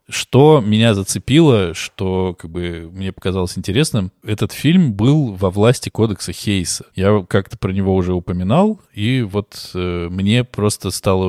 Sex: male